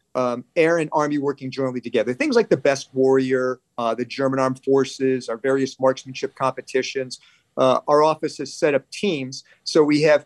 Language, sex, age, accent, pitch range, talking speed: English, male, 40-59, American, 130-150 Hz, 180 wpm